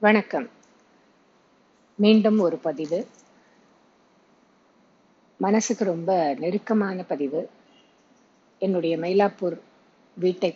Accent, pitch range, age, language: native, 190-240 Hz, 50-69, Tamil